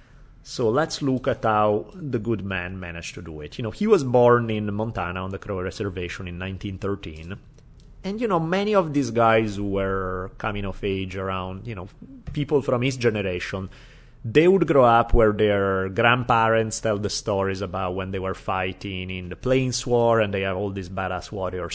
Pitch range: 95-120 Hz